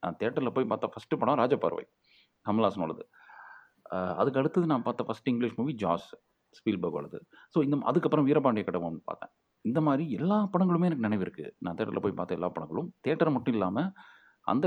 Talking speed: 165 wpm